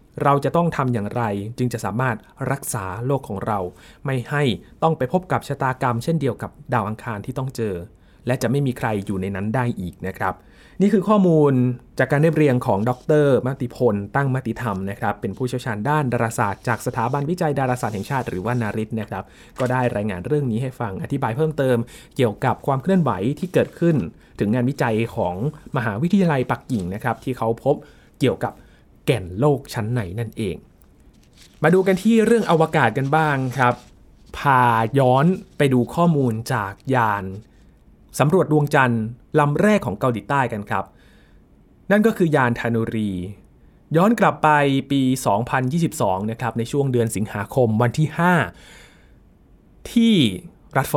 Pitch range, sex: 110-145 Hz, male